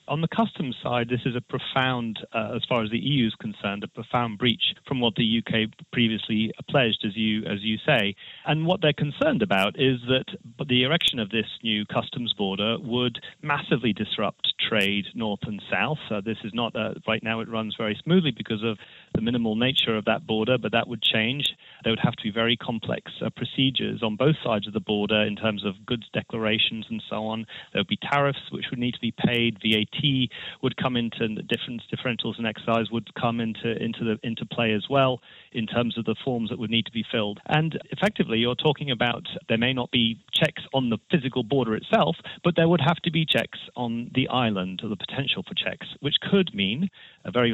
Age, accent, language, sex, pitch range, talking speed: 30-49, British, English, male, 110-130 Hz, 215 wpm